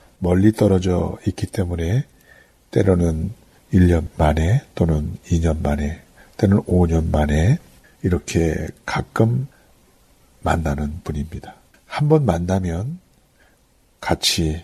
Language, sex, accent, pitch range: Korean, male, native, 80-115 Hz